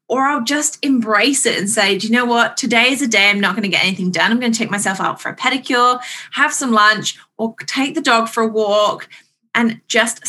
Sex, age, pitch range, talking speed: female, 20-39, 215-265 Hz, 250 wpm